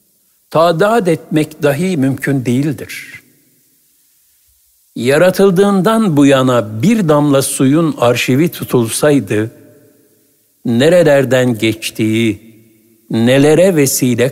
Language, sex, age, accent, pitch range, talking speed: Turkish, male, 60-79, native, 125-185 Hz, 70 wpm